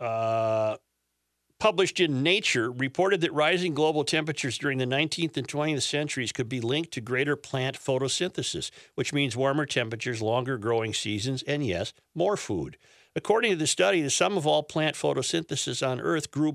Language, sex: English, male